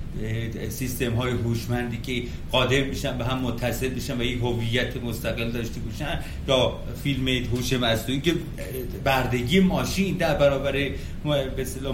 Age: 40-59